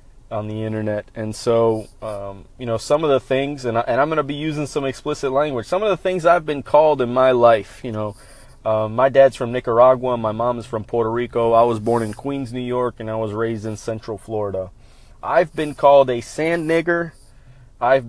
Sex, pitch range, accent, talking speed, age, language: male, 110-135 Hz, American, 220 wpm, 30-49, English